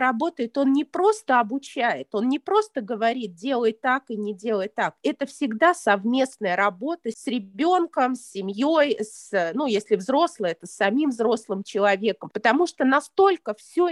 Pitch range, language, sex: 215-290 Hz, Russian, female